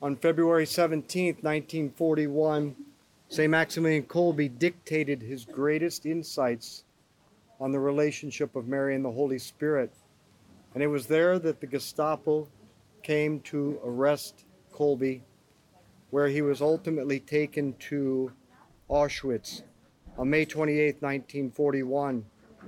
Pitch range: 140-170 Hz